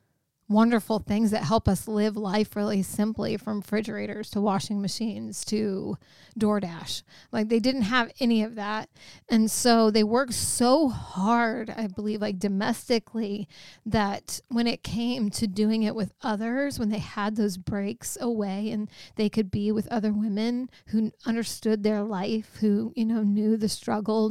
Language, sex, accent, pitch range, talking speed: English, female, American, 210-245 Hz, 160 wpm